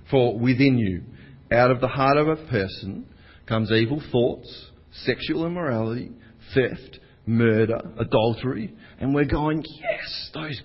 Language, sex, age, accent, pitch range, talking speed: English, male, 50-69, Australian, 115-170 Hz, 130 wpm